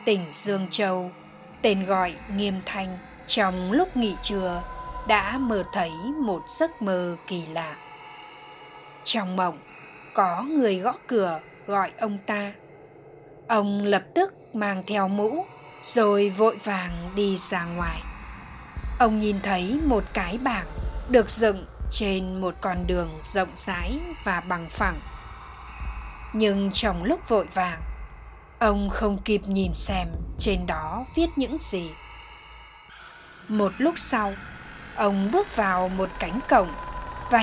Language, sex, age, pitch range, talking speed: Vietnamese, female, 10-29, 185-240 Hz, 130 wpm